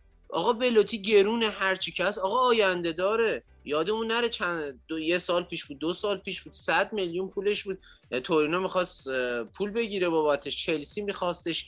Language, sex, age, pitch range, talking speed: Persian, male, 30-49, 165-220 Hz, 165 wpm